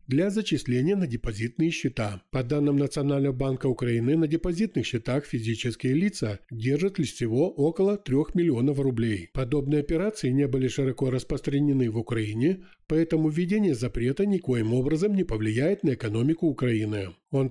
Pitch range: 120-160 Hz